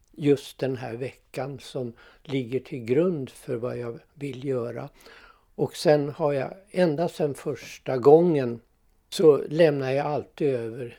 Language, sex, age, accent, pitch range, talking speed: Swedish, male, 60-79, native, 125-165 Hz, 140 wpm